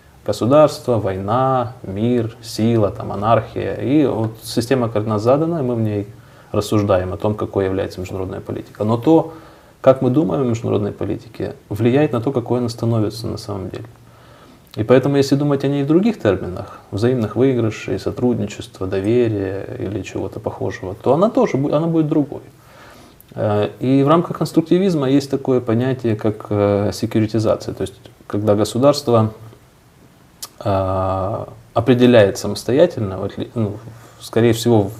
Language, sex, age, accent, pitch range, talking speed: Russian, male, 30-49, native, 105-130 Hz, 135 wpm